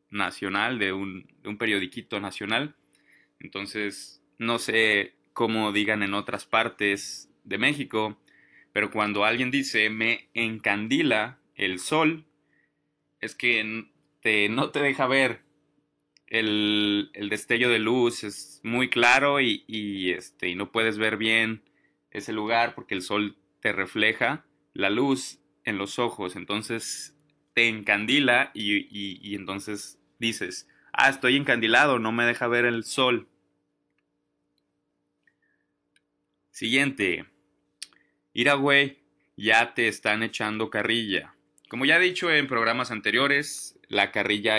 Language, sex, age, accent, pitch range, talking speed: English, male, 20-39, Mexican, 105-125 Hz, 125 wpm